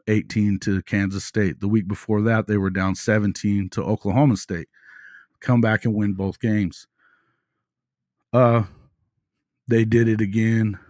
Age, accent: 40-59, American